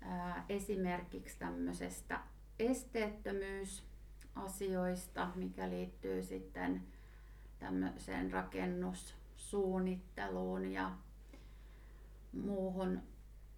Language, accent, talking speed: Finnish, native, 50 wpm